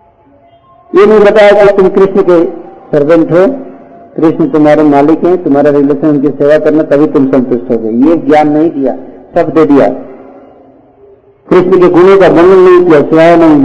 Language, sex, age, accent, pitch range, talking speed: Hindi, male, 50-69, native, 130-195 Hz, 170 wpm